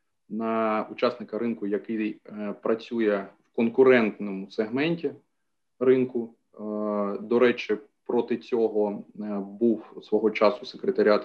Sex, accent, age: male, native, 20-39